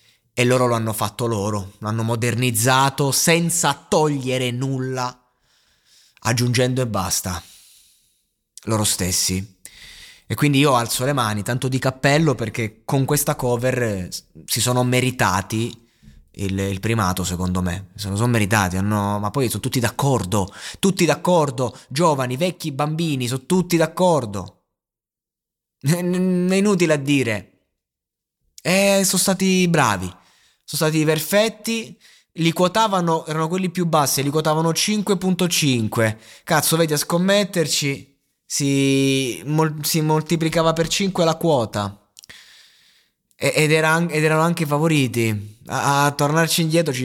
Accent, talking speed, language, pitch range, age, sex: native, 130 wpm, Italian, 110-155 Hz, 20-39, male